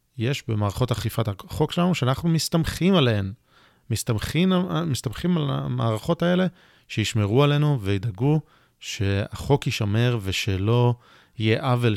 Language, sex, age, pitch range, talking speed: Hebrew, male, 30-49, 110-145 Hz, 100 wpm